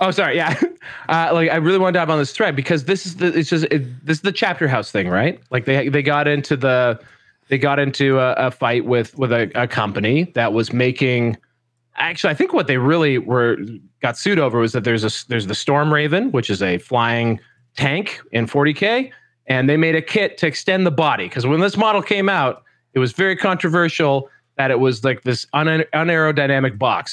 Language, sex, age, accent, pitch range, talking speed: English, male, 30-49, American, 120-160 Hz, 225 wpm